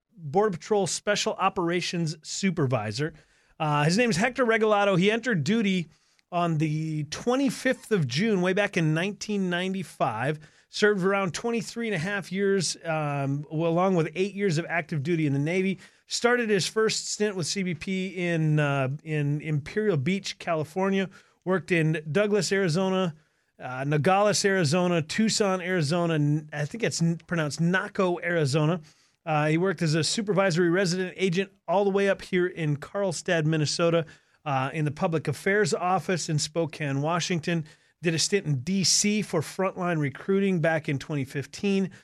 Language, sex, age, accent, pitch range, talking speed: English, male, 30-49, American, 155-190 Hz, 150 wpm